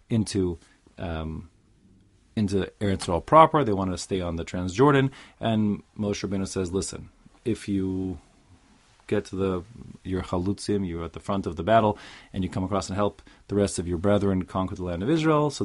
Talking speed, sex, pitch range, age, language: 190 wpm, male, 95-115 Hz, 30-49, English